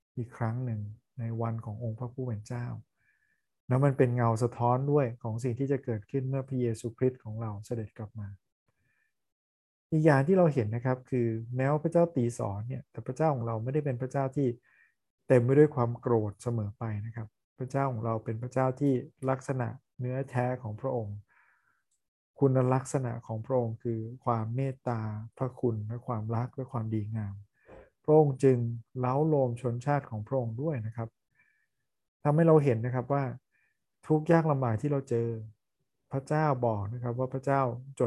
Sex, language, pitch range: male, Thai, 115-135 Hz